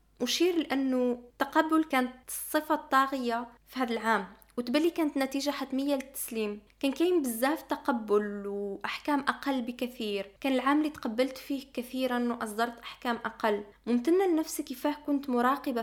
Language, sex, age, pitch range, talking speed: Arabic, female, 20-39, 235-285 Hz, 135 wpm